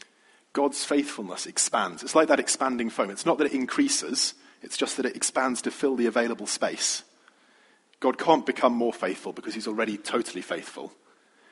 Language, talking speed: English, 170 wpm